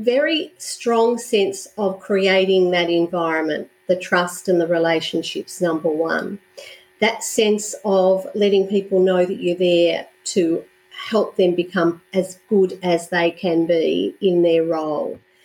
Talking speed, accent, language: 140 wpm, Australian, English